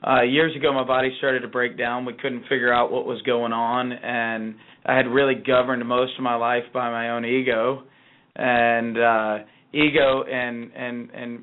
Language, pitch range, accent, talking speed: English, 120-130 Hz, American, 190 wpm